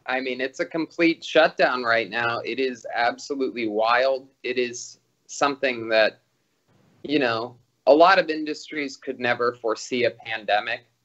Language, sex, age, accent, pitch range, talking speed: English, male, 20-39, American, 125-150 Hz, 145 wpm